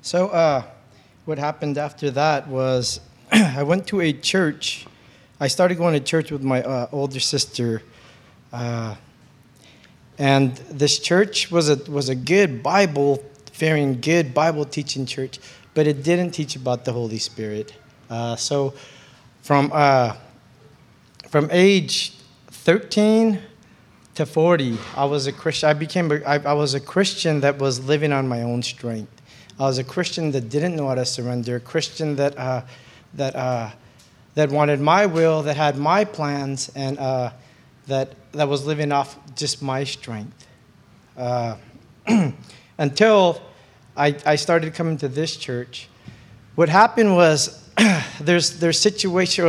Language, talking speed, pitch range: English, 150 wpm, 130-160 Hz